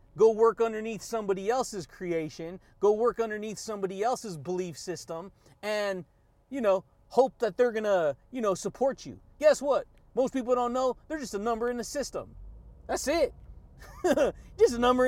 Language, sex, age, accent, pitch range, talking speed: English, male, 30-49, American, 205-260 Hz, 165 wpm